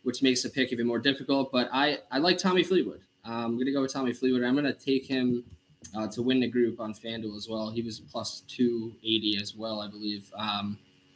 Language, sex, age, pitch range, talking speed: English, male, 20-39, 110-130 Hz, 230 wpm